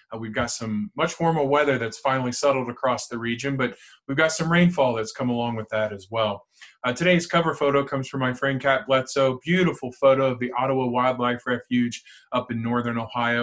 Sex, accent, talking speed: male, American, 205 wpm